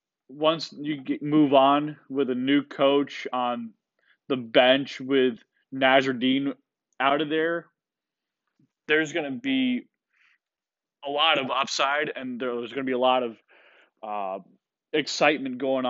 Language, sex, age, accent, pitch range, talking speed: English, male, 20-39, American, 130-160 Hz, 135 wpm